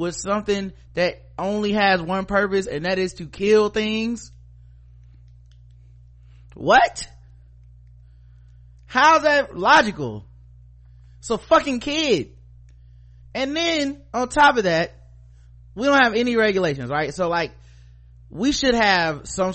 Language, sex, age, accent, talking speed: English, male, 30-49, American, 115 wpm